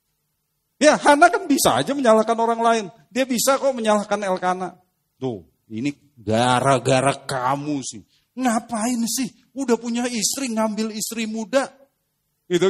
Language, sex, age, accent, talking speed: Indonesian, male, 40-59, native, 130 wpm